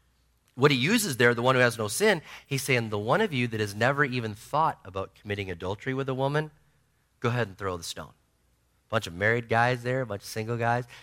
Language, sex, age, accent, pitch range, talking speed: English, male, 30-49, American, 105-140 Hz, 240 wpm